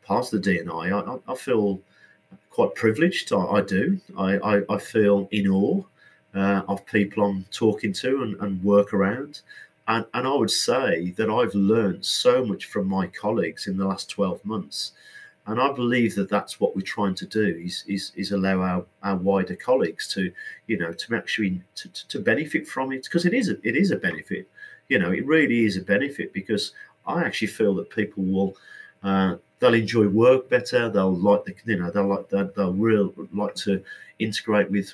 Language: English